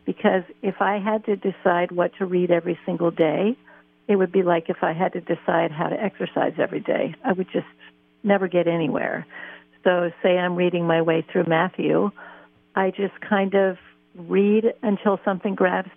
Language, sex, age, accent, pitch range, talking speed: English, female, 50-69, American, 165-200 Hz, 180 wpm